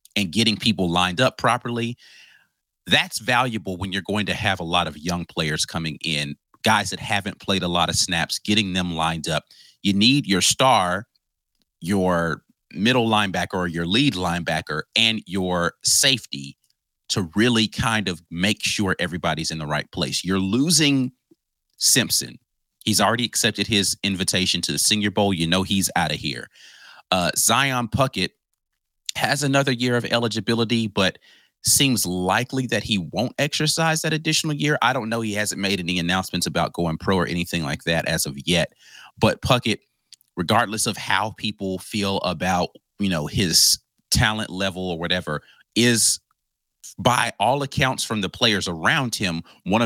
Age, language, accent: 30-49, English, American